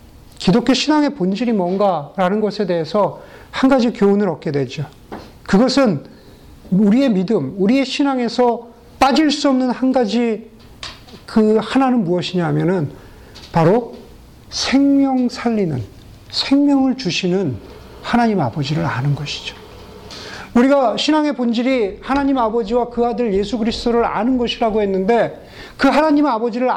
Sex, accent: male, native